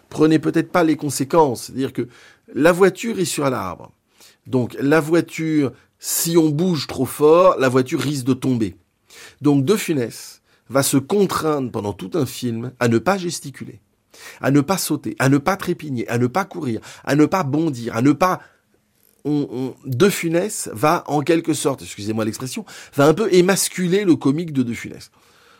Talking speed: 180 wpm